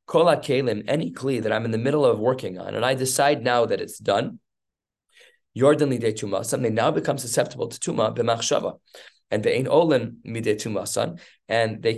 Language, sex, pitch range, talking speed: English, male, 110-145 Hz, 130 wpm